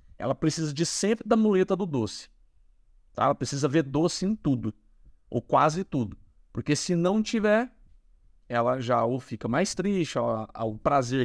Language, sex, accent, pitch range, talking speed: Portuguese, male, Brazilian, 115-165 Hz, 160 wpm